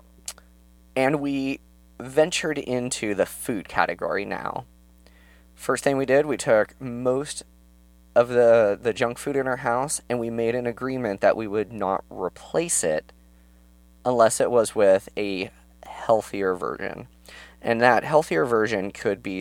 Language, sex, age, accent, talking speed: English, male, 20-39, American, 145 wpm